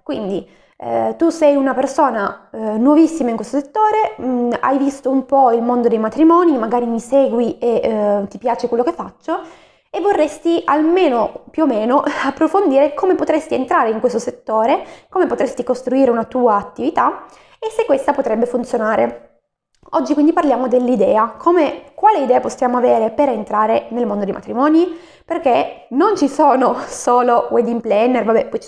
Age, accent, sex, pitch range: 20-39, native, female, 230-295 Hz